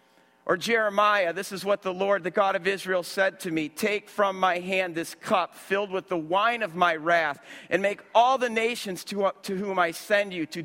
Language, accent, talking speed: English, American, 215 wpm